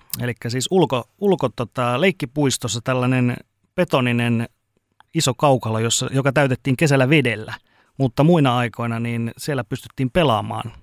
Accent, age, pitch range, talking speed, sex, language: native, 30-49, 115-135 Hz, 120 wpm, male, Finnish